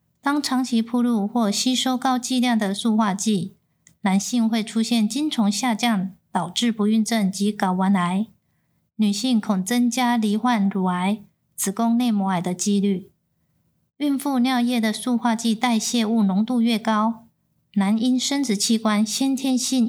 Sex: female